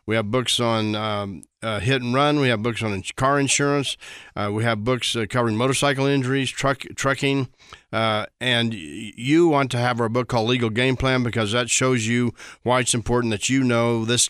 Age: 40-59